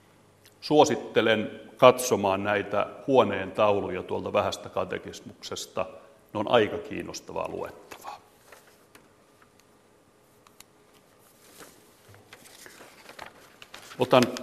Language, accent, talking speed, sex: Finnish, native, 60 wpm, male